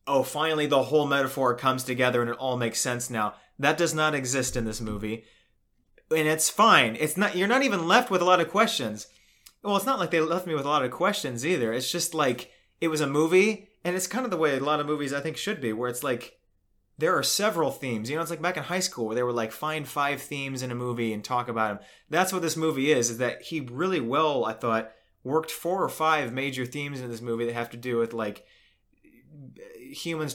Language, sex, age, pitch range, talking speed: English, male, 30-49, 120-155 Hz, 245 wpm